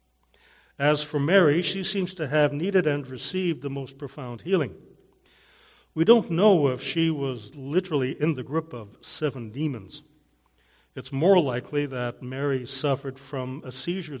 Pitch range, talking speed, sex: 120-155 Hz, 150 wpm, male